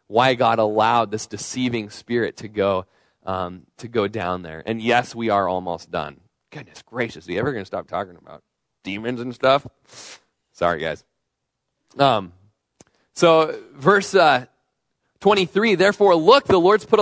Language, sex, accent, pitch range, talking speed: English, male, American, 130-180 Hz, 155 wpm